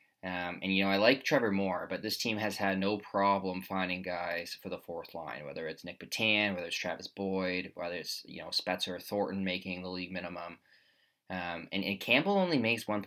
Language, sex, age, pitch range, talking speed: English, male, 20-39, 90-105 Hz, 210 wpm